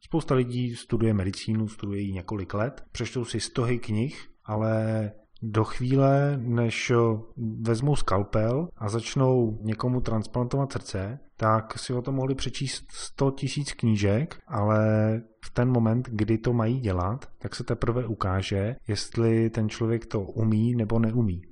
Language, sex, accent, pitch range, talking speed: Czech, male, native, 110-125 Hz, 140 wpm